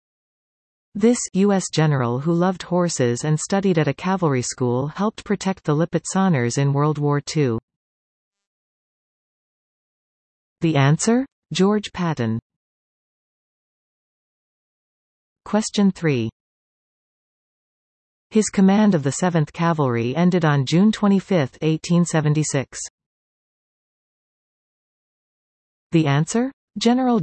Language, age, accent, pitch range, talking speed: English, 40-59, American, 140-195 Hz, 90 wpm